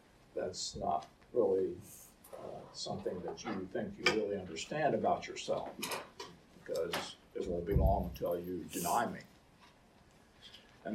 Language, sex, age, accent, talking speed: English, male, 50-69, American, 125 wpm